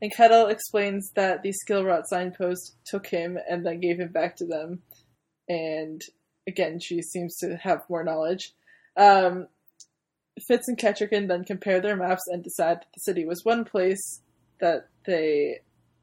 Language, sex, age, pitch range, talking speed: English, female, 20-39, 175-205 Hz, 160 wpm